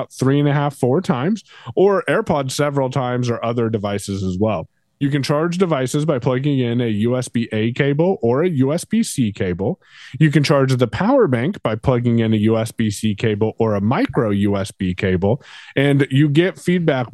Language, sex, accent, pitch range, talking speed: English, male, American, 115-150 Hz, 175 wpm